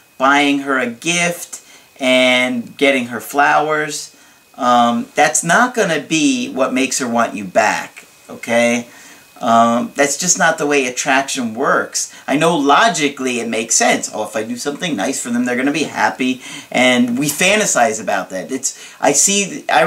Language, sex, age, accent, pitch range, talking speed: English, male, 40-59, American, 130-170 Hz, 165 wpm